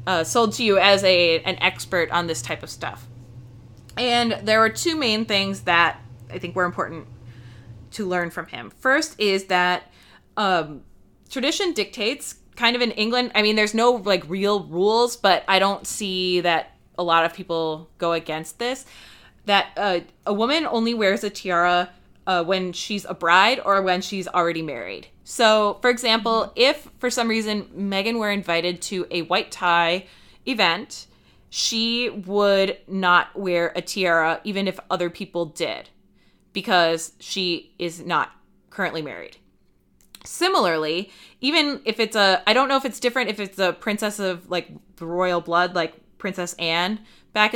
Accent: American